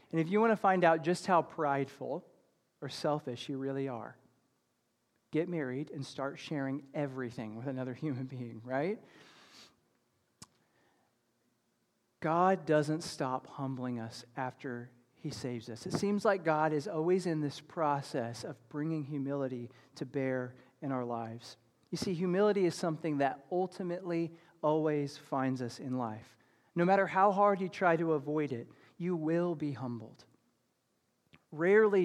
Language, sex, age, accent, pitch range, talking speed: English, male, 40-59, American, 130-170 Hz, 145 wpm